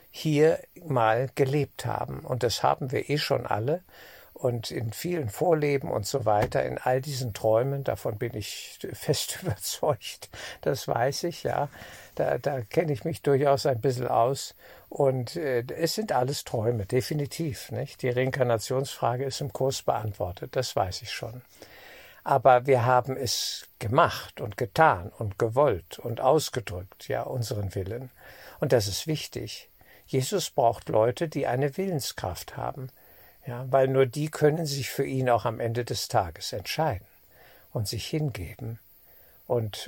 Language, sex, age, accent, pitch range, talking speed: German, male, 60-79, German, 110-140 Hz, 150 wpm